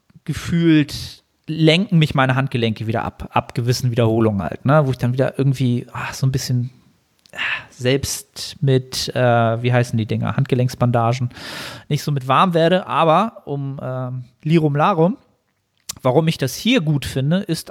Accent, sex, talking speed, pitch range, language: German, male, 145 wpm, 130-165 Hz, German